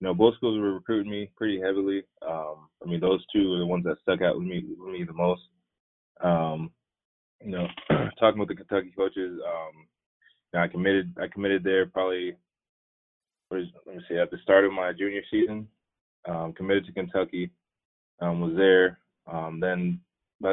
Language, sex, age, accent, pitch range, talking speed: English, male, 20-39, American, 85-95 Hz, 185 wpm